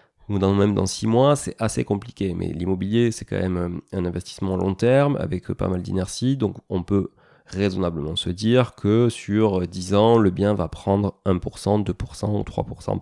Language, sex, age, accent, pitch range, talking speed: French, male, 30-49, French, 95-120 Hz, 180 wpm